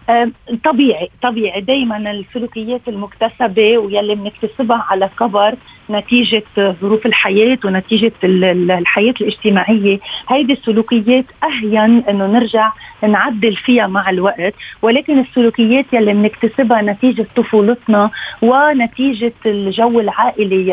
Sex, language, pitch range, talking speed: female, Arabic, 205-250 Hz, 95 wpm